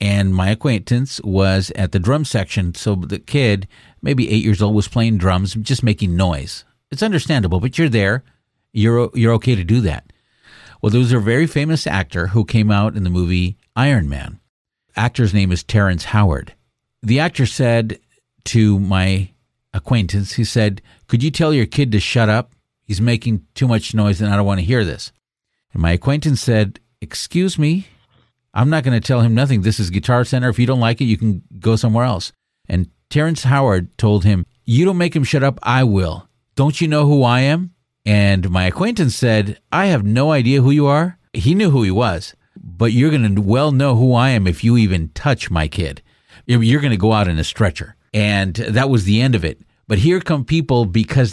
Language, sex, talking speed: English, male, 205 wpm